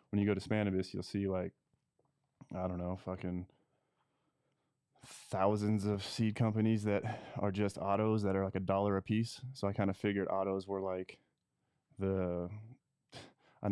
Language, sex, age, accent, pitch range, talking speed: English, male, 20-39, American, 95-105 Hz, 160 wpm